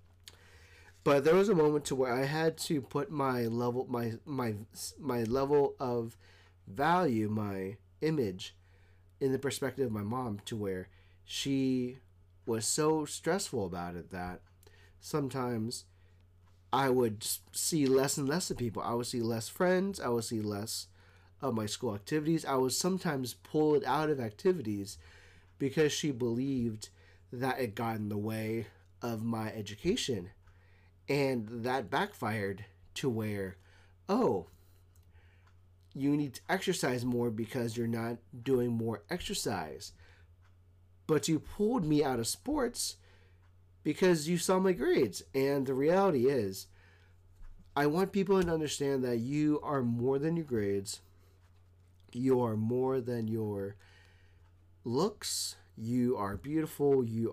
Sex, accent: male, American